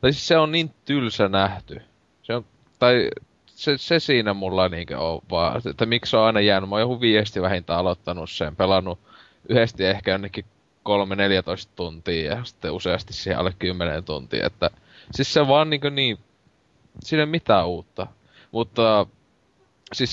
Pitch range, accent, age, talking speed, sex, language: 95-115 Hz, native, 20-39, 165 wpm, male, Finnish